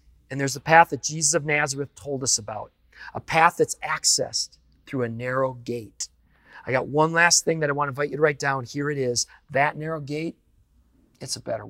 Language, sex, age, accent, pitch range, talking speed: English, male, 40-59, American, 110-155 Hz, 215 wpm